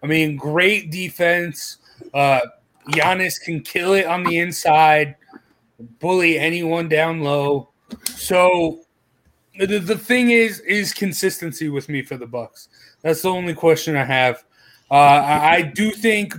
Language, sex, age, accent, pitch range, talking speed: English, male, 30-49, American, 155-195 Hz, 145 wpm